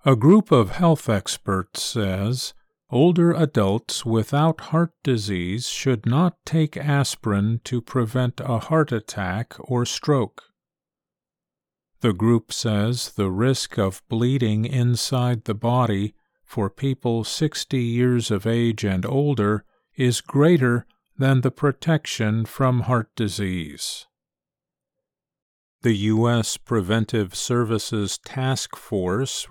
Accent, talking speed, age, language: American, 110 wpm, 50-69, English